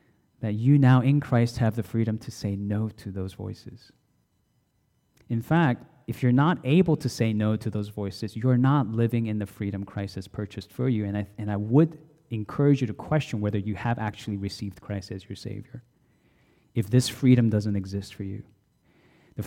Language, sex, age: English, male, 30-49